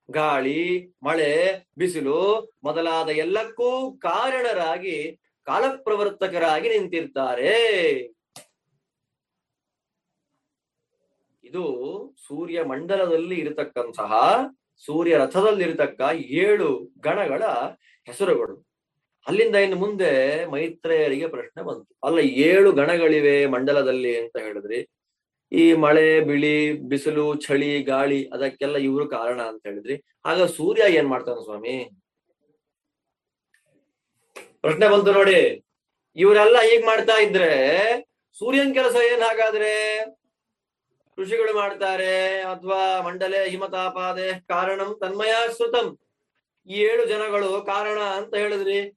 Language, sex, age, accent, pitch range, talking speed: Kannada, male, 30-49, native, 160-230 Hz, 75 wpm